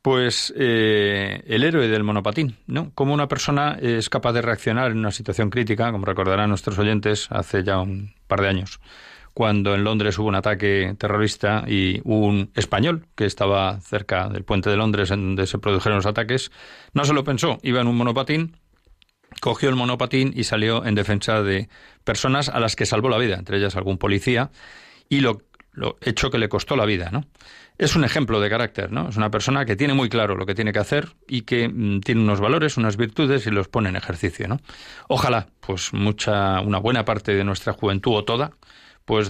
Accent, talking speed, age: Spanish, 200 wpm, 40-59